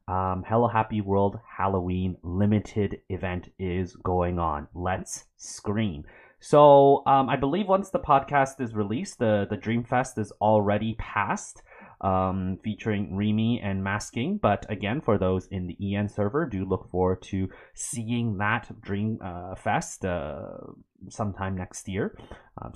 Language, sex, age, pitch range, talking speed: English, male, 30-49, 95-120 Hz, 145 wpm